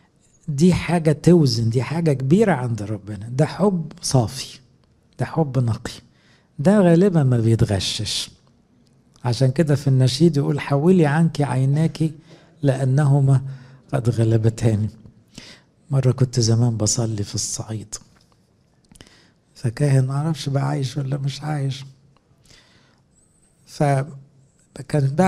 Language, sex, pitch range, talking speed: English, male, 130-155 Hz, 100 wpm